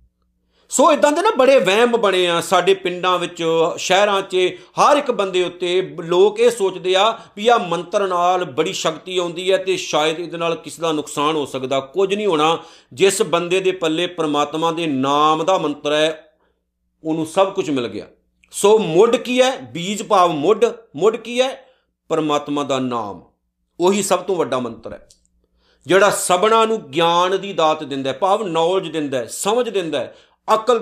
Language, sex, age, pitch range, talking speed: Punjabi, male, 50-69, 155-200 Hz, 170 wpm